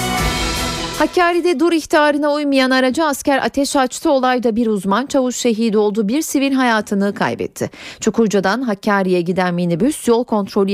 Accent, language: native, Turkish